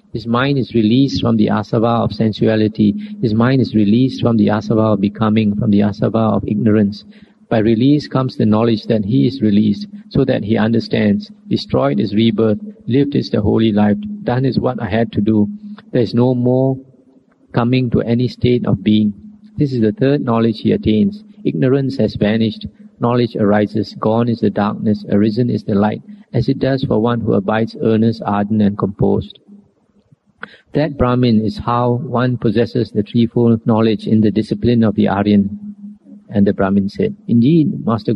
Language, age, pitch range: English, 50-69, 110-135 Hz